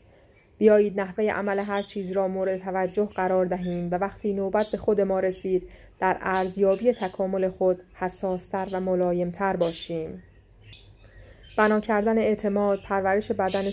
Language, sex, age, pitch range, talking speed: Persian, female, 30-49, 180-205 Hz, 130 wpm